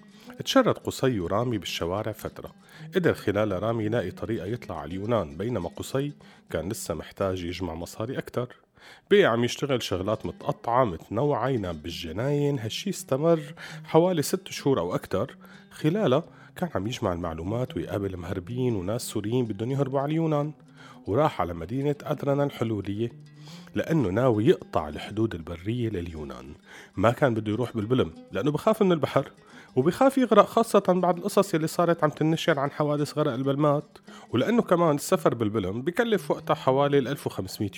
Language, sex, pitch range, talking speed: Arabic, male, 105-155 Hz, 140 wpm